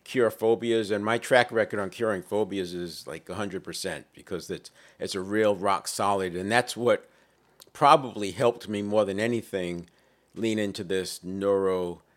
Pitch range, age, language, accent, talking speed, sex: 100-120 Hz, 50-69, English, American, 160 wpm, male